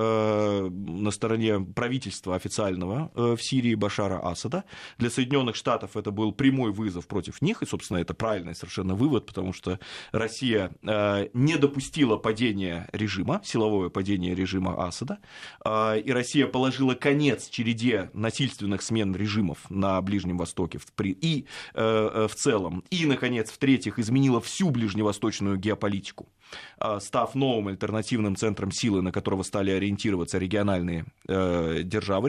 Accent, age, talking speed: native, 20-39, 130 wpm